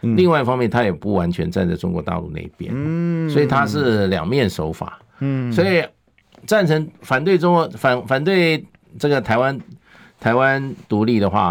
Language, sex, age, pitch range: Chinese, male, 50-69, 90-130 Hz